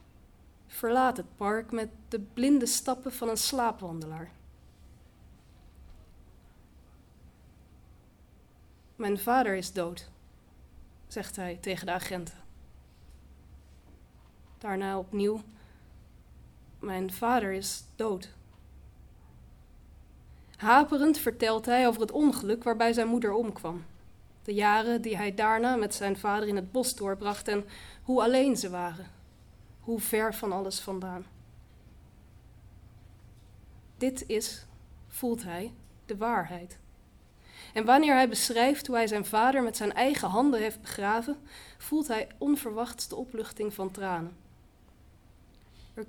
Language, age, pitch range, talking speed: Dutch, 20-39, 155-230 Hz, 110 wpm